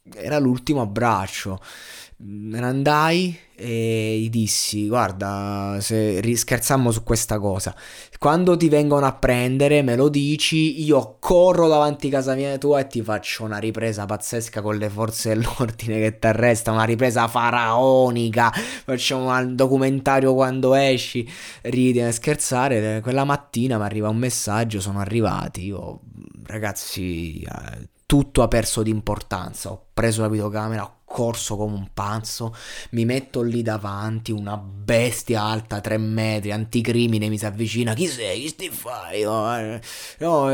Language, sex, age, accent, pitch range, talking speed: Italian, male, 20-39, native, 110-135 Hz, 145 wpm